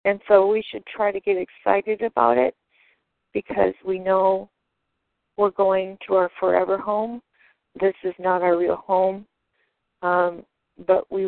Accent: American